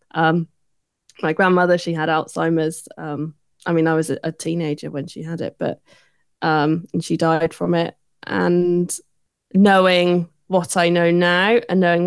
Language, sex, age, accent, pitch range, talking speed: English, female, 20-39, British, 155-175 Hz, 160 wpm